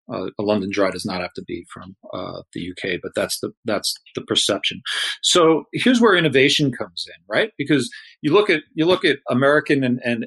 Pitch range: 115-145 Hz